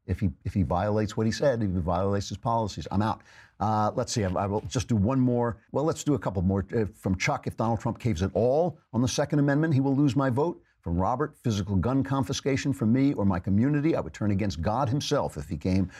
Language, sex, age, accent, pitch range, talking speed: English, male, 50-69, American, 100-125 Hz, 255 wpm